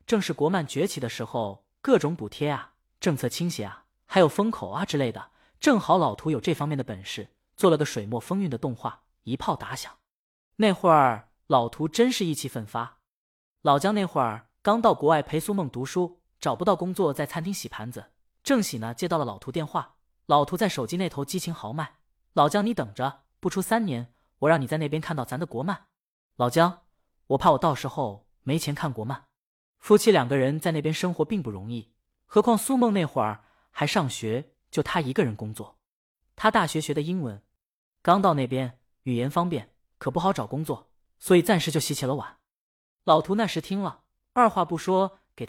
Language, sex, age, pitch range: Chinese, female, 20-39, 130-180 Hz